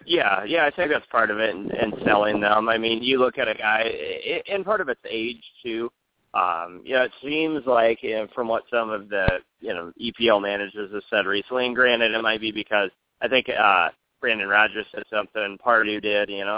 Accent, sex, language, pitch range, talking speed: American, male, English, 100-115 Hz, 225 wpm